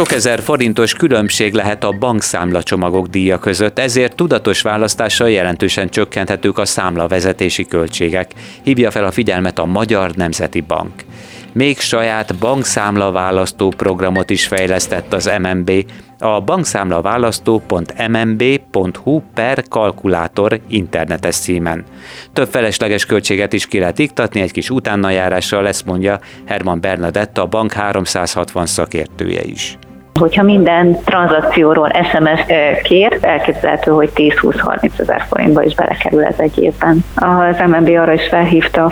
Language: Hungarian